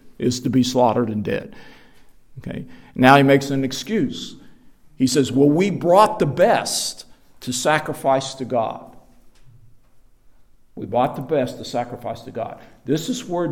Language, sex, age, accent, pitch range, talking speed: English, male, 50-69, American, 120-145 Hz, 145 wpm